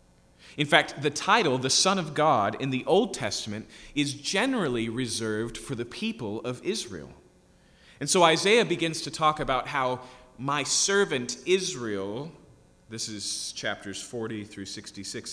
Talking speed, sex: 145 wpm, male